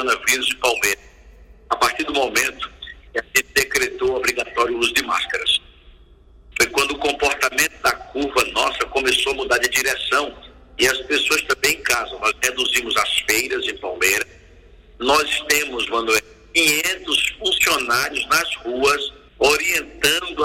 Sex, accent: male, Brazilian